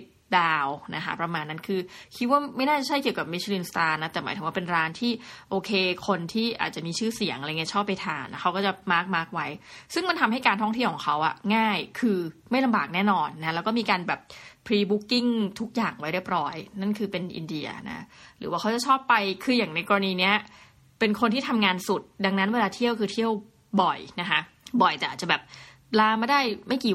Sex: female